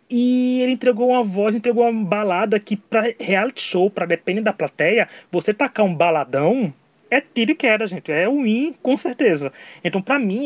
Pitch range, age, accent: 170-225 Hz, 20-39, Brazilian